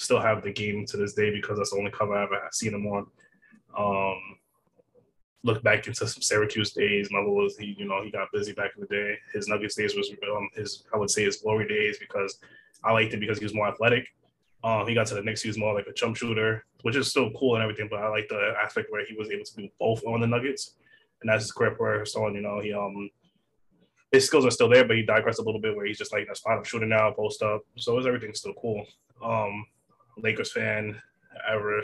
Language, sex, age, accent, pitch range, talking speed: English, male, 20-39, American, 105-115 Hz, 255 wpm